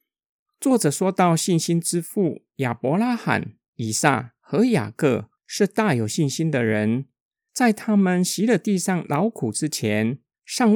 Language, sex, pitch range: Chinese, male, 135-210 Hz